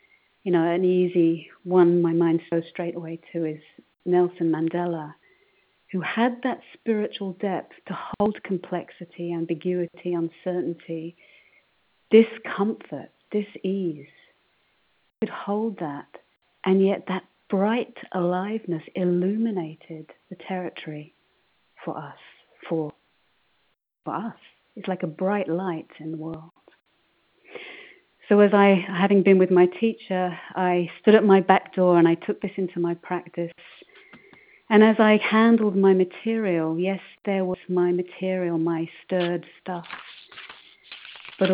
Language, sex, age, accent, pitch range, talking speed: English, female, 40-59, British, 170-200 Hz, 125 wpm